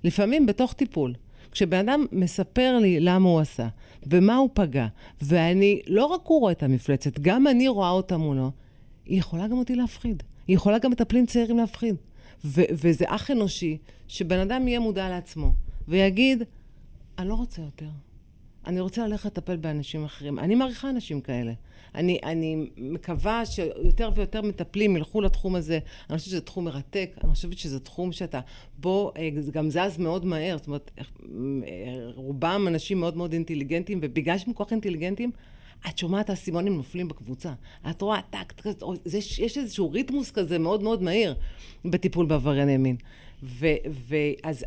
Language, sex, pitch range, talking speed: Hebrew, female, 150-205 Hz, 155 wpm